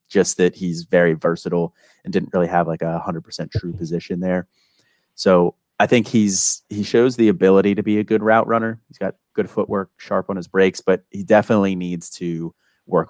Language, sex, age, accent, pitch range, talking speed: English, male, 30-49, American, 85-105 Hz, 195 wpm